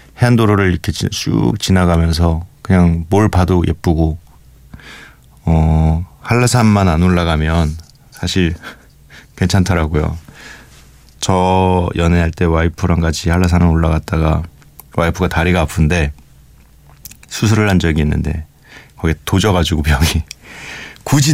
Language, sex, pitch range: Korean, male, 80-100 Hz